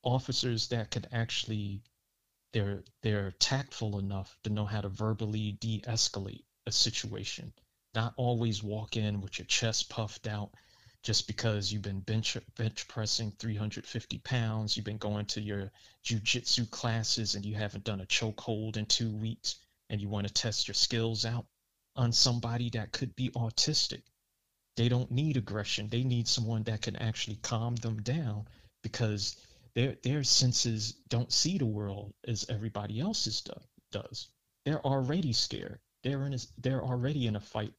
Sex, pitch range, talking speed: male, 105-120 Hz, 160 wpm